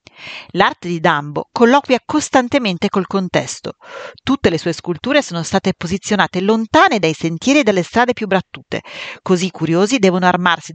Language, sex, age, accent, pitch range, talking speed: Italian, female, 40-59, native, 165-225 Hz, 150 wpm